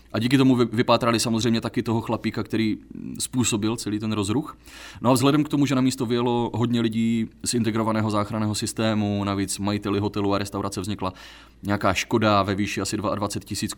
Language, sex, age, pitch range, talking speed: Czech, male, 30-49, 100-115 Hz, 180 wpm